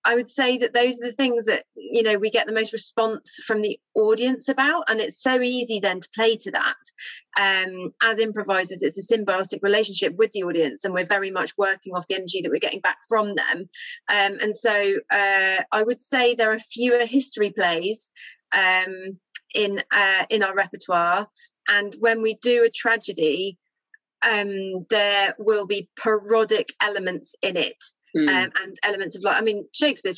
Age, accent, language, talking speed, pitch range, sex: 30-49, British, English, 185 wpm, 190-230 Hz, female